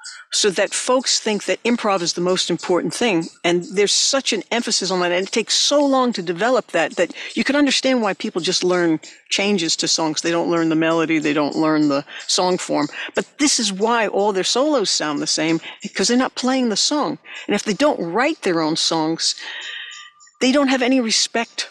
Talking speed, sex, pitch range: 215 wpm, female, 180-255 Hz